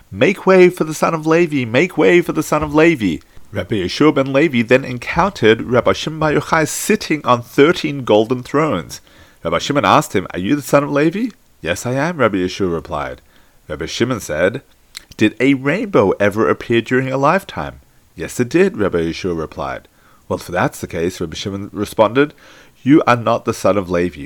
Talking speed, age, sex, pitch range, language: 190 wpm, 30-49, male, 105-155 Hz, English